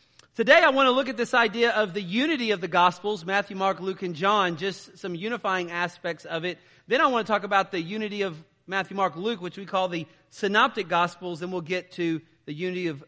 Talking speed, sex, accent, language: 230 wpm, male, American, English